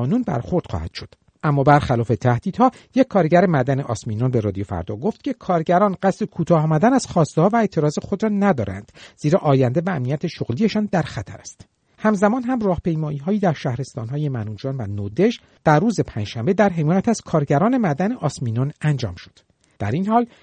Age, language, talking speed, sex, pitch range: 50-69, Persian, 175 wpm, male, 125-205 Hz